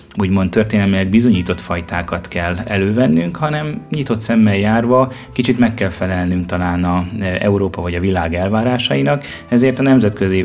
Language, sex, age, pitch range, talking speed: Hungarian, male, 30-49, 95-120 Hz, 140 wpm